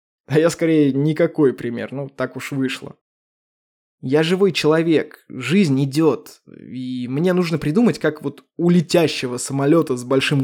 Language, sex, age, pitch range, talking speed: Russian, male, 20-39, 140-180 Hz, 145 wpm